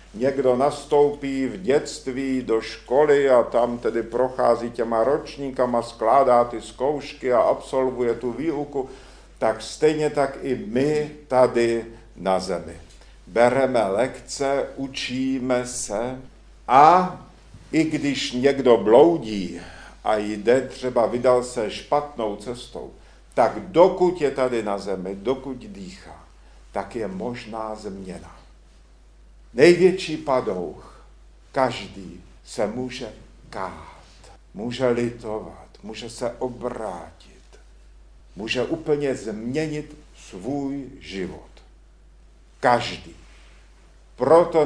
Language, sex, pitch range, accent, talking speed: Czech, male, 110-140 Hz, native, 100 wpm